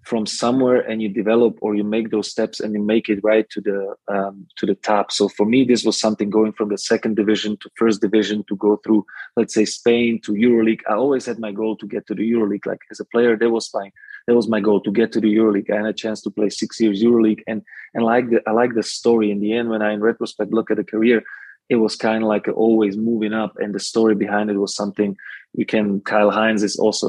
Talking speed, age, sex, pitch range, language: 260 wpm, 20-39, male, 105-115 Hz, English